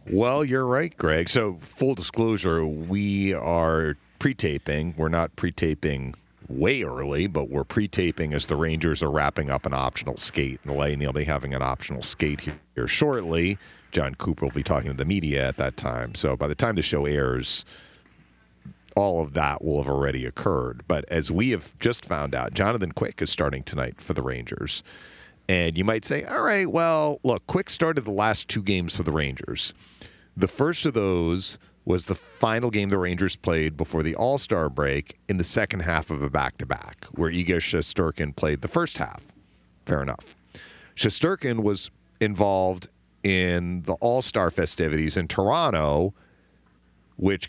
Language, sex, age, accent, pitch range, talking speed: English, male, 40-59, American, 75-100 Hz, 175 wpm